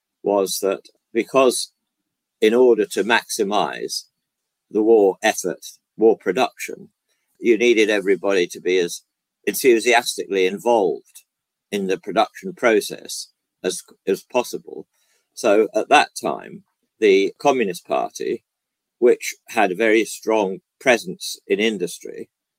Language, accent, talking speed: English, British, 110 wpm